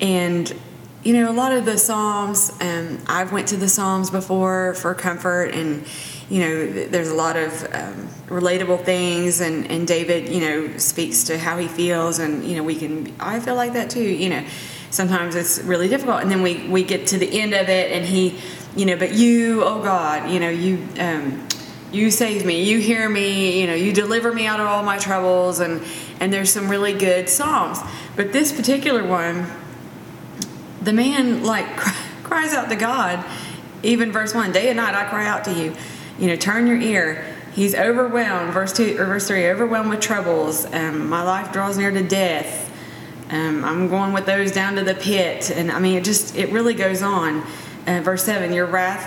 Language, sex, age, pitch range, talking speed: English, female, 20-39, 175-210 Hz, 200 wpm